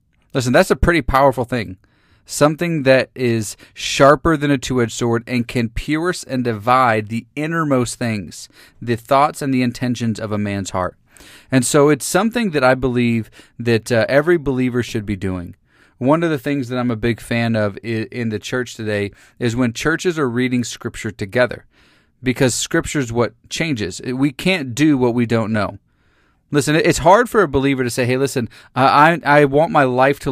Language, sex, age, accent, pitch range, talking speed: English, male, 30-49, American, 115-145 Hz, 185 wpm